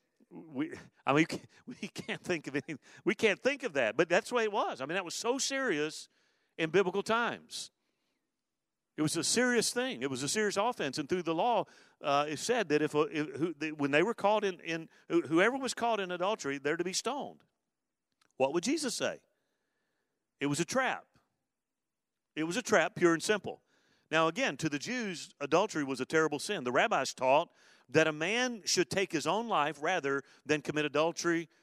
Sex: male